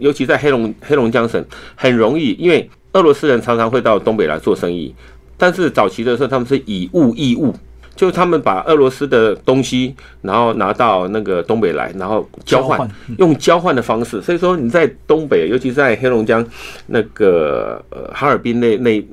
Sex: male